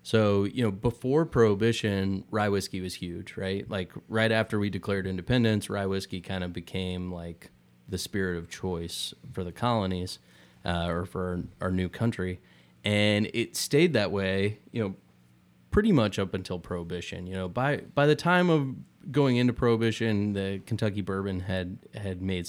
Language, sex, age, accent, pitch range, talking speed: English, male, 20-39, American, 90-105 Hz, 170 wpm